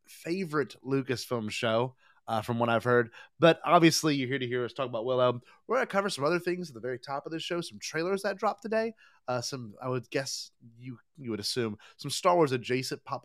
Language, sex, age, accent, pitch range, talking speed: English, male, 30-49, American, 120-185 Hz, 225 wpm